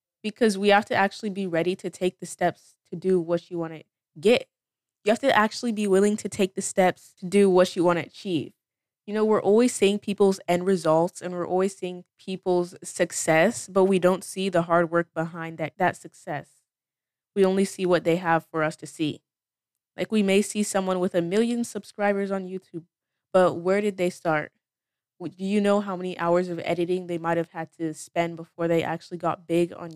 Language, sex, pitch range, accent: English, female, 165-195 Hz, American